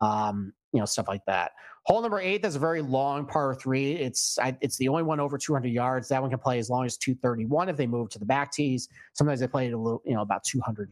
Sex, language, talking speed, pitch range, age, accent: male, English, 275 wpm, 120-150 Hz, 30-49, American